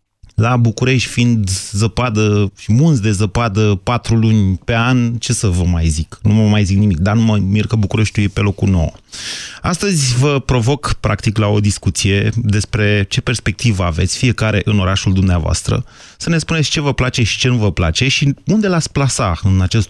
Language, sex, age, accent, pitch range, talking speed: Romanian, male, 30-49, native, 105-135 Hz, 195 wpm